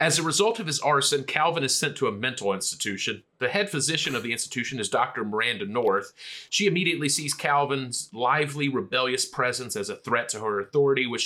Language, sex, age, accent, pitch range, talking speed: English, male, 30-49, American, 120-150 Hz, 195 wpm